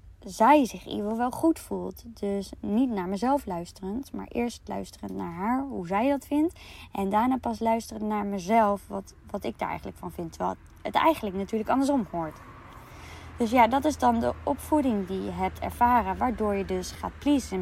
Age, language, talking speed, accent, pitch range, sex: 20-39, Dutch, 190 wpm, Dutch, 190-245 Hz, female